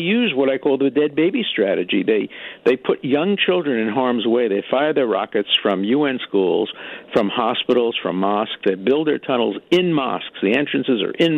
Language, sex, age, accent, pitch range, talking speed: English, male, 50-69, American, 120-165 Hz, 195 wpm